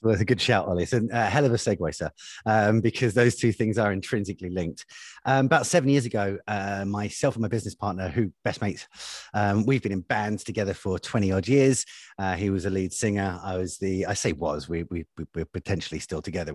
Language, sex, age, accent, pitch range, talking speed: English, male, 30-49, British, 95-125 Hz, 230 wpm